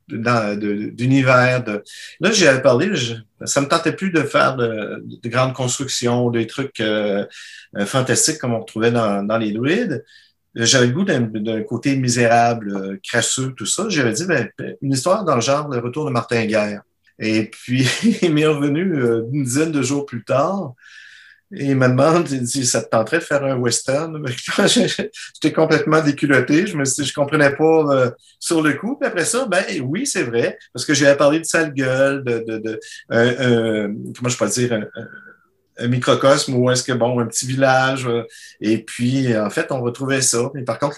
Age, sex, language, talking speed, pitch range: 50-69, male, French, 200 wpm, 115-145 Hz